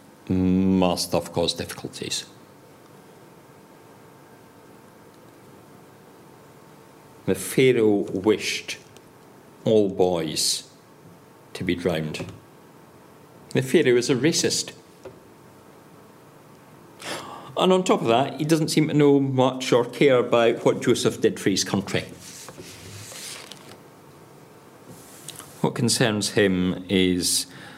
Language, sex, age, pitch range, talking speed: English, male, 50-69, 95-130 Hz, 90 wpm